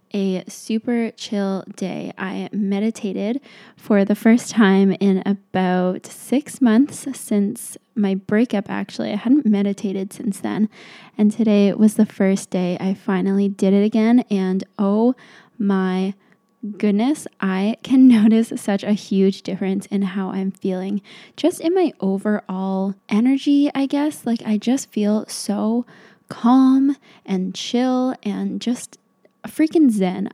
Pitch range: 200-230 Hz